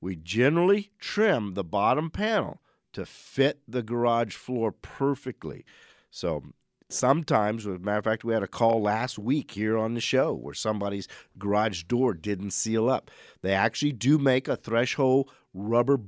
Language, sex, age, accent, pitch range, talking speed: English, male, 50-69, American, 105-140 Hz, 160 wpm